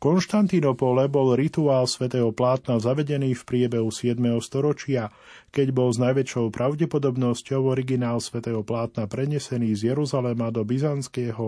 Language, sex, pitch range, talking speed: Slovak, male, 115-135 Hz, 120 wpm